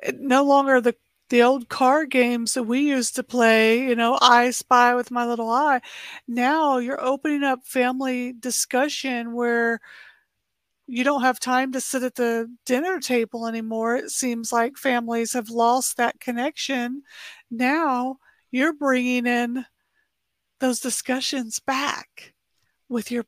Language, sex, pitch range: English, female, 235-270 Hz